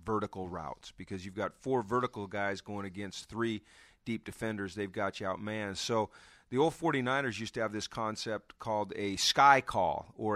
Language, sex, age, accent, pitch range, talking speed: English, male, 40-59, American, 105-120 Hz, 185 wpm